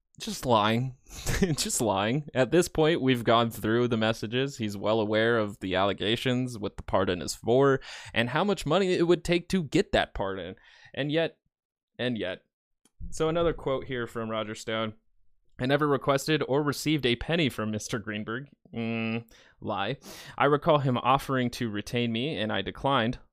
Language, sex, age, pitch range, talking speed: English, male, 20-39, 110-145 Hz, 170 wpm